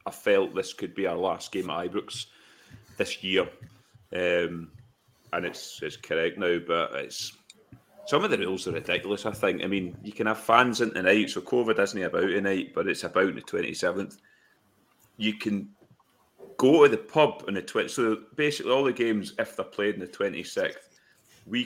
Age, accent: 30-49, British